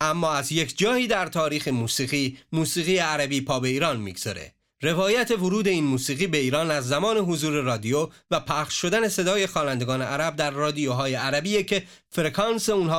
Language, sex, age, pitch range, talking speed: Persian, male, 30-49, 140-195 Hz, 160 wpm